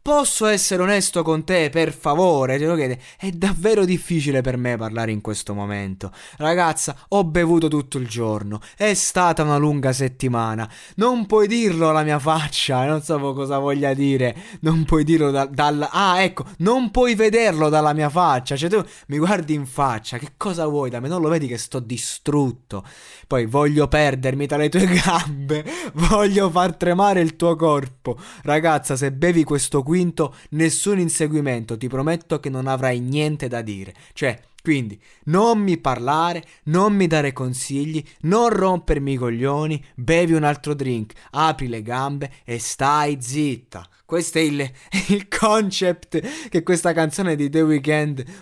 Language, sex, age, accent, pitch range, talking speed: Italian, male, 20-39, native, 135-175 Hz, 165 wpm